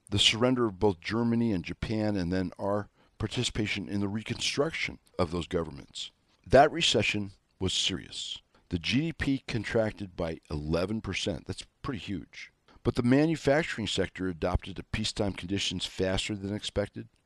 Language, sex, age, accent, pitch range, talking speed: English, male, 60-79, American, 90-115 Hz, 145 wpm